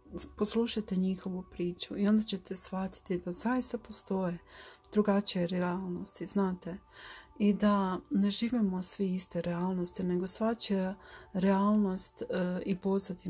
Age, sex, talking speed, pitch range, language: 30-49, female, 115 wpm, 180-205 Hz, Croatian